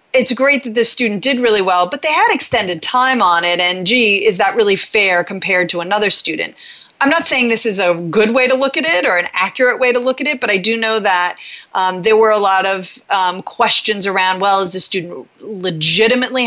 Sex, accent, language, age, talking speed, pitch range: female, American, English, 30-49, 235 wpm, 185-250 Hz